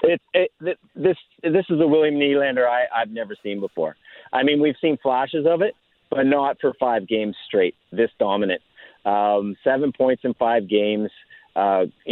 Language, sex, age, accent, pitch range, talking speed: English, male, 40-59, American, 105-130 Hz, 175 wpm